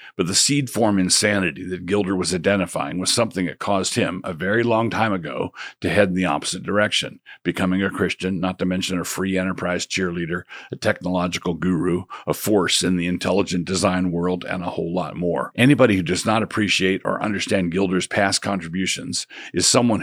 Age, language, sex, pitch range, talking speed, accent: 50-69, English, male, 90-105 Hz, 185 wpm, American